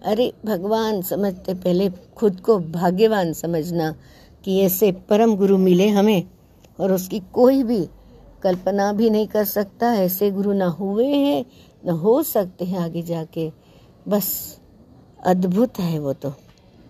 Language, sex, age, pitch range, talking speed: Hindi, female, 60-79, 185-230 Hz, 140 wpm